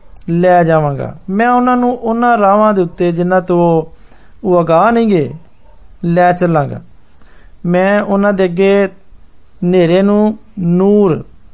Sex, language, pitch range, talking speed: male, Hindi, 165-210 Hz, 95 wpm